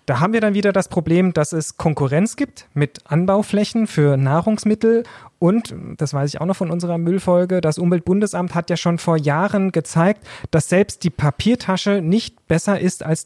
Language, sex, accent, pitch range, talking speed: German, male, German, 155-190 Hz, 180 wpm